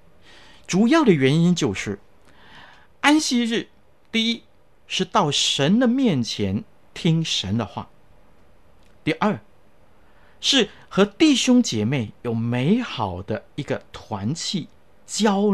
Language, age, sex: Chinese, 50-69, male